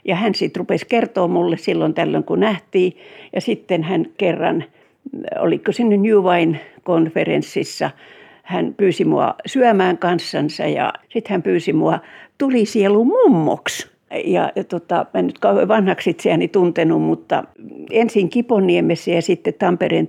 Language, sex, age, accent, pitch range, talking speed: Finnish, female, 60-79, native, 180-230 Hz, 130 wpm